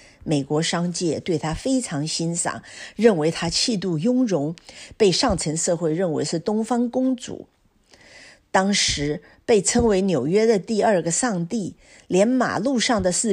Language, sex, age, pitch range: Chinese, female, 50-69, 155-215 Hz